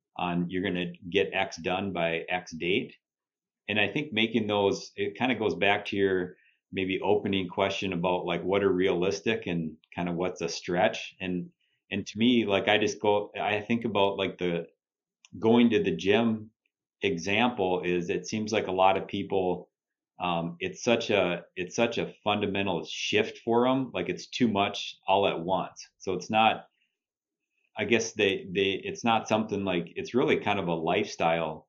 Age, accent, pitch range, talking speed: 30-49, American, 85-100 Hz, 180 wpm